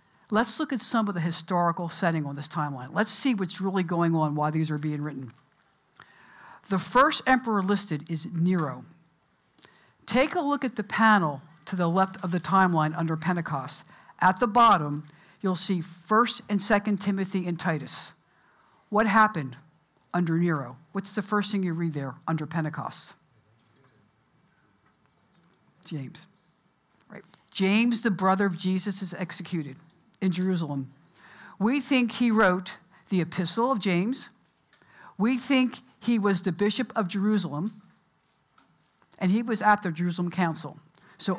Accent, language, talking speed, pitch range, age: American, English, 145 wpm, 165-210 Hz, 60-79